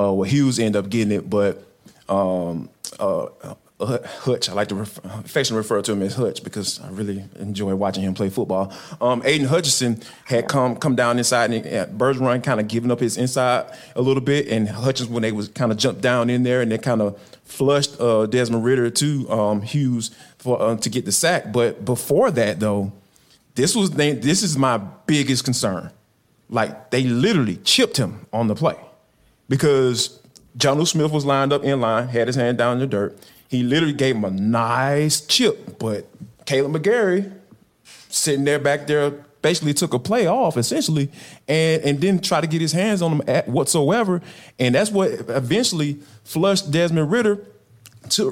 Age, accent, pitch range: 30-49, American, 120-170 Hz